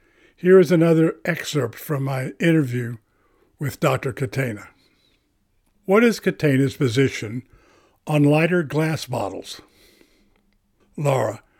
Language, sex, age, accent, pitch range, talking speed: English, male, 60-79, American, 130-170 Hz, 100 wpm